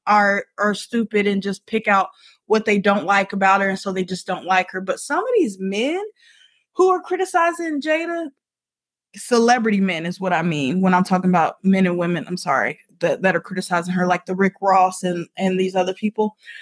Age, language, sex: 20-39, English, female